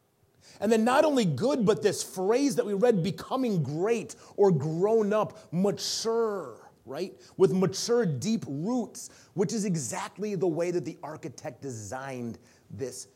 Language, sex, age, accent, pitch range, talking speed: English, male, 30-49, American, 135-195 Hz, 145 wpm